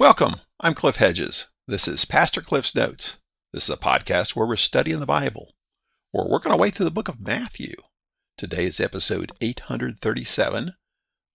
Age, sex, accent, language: 50-69, male, American, English